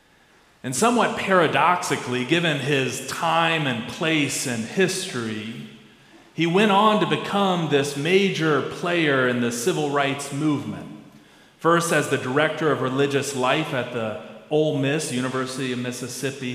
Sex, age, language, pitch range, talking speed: male, 40-59, English, 125-155 Hz, 135 wpm